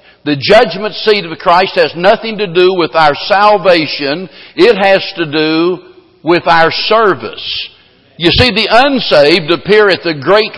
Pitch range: 160-200 Hz